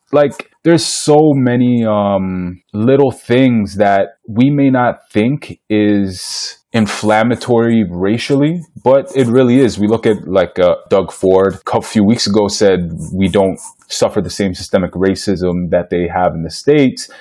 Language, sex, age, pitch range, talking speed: English, male, 20-39, 100-125 Hz, 155 wpm